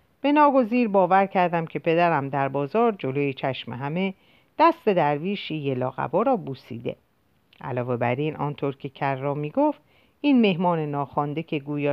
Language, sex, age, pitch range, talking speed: Persian, female, 50-69, 140-230 Hz, 140 wpm